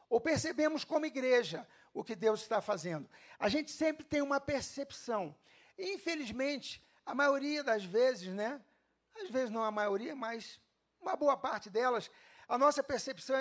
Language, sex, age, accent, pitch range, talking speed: Portuguese, male, 50-69, Brazilian, 230-310 Hz, 155 wpm